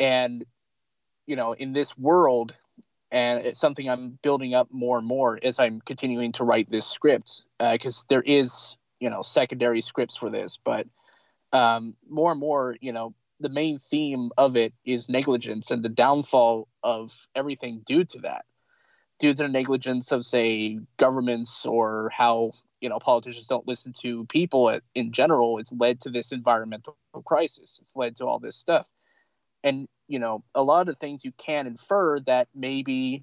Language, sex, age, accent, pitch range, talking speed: English, male, 20-39, American, 120-140 Hz, 175 wpm